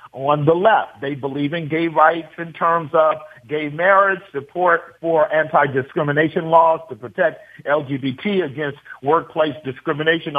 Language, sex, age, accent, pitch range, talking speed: English, male, 50-69, American, 145-170 Hz, 135 wpm